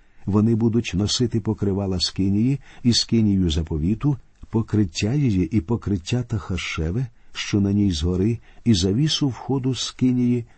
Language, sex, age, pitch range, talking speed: Ukrainian, male, 50-69, 95-120 Hz, 120 wpm